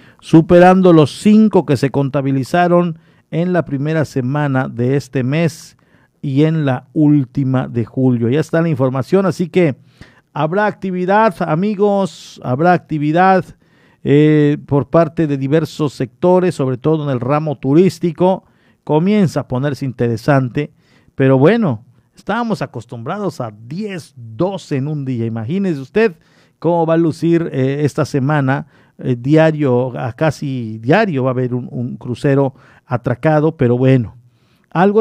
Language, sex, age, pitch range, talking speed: Spanish, male, 50-69, 130-175 Hz, 135 wpm